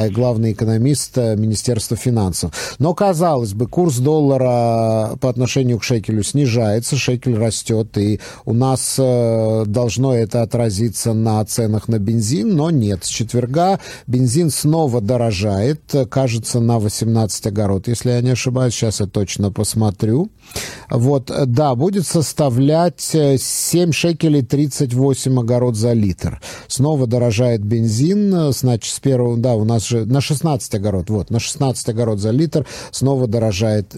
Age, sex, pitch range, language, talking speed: 50-69, male, 110-140 Hz, Russian, 130 wpm